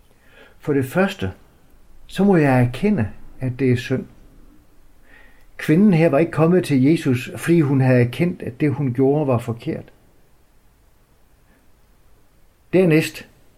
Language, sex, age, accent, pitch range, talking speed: Danish, male, 60-79, native, 115-160 Hz, 130 wpm